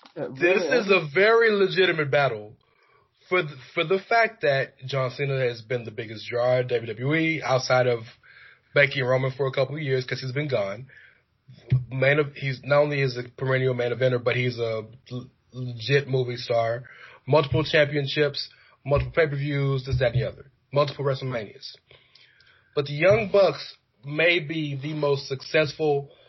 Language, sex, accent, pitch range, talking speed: English, male, American, 125-150 Hz, 160 wpm